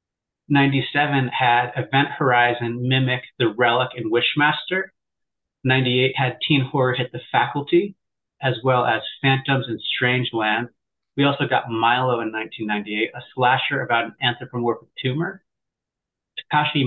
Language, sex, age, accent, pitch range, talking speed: English, male, 30-49, American, 120-145 Hz, 130 wpm